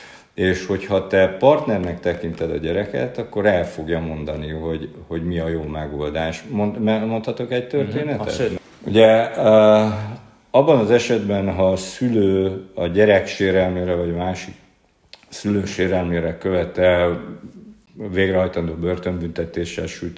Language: Hungarian